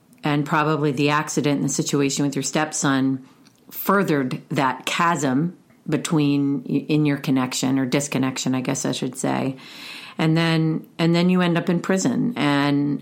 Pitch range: 135-155 Hz